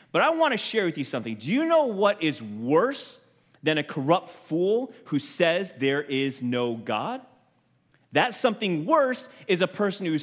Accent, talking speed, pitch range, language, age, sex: American, 180 wpm, 135-210 Hz, English, 30-49, male